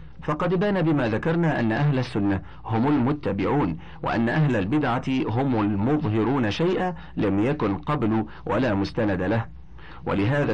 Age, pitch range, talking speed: 50-69, 95-140 Hz, 125 wpm